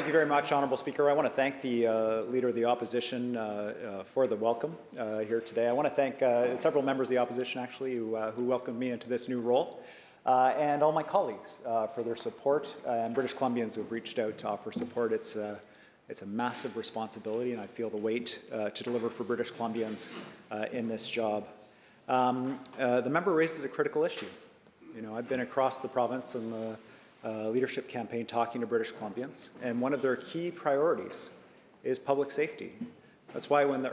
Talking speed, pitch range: 210 wpm, 115-135 Hz